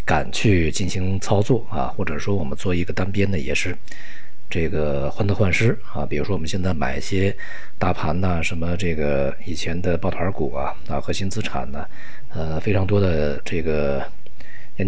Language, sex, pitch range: Chinese, male, 80-110 Hz